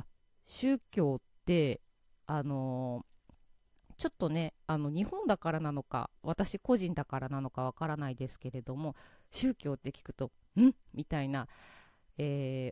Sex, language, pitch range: female, Japanese, 130-200 Hz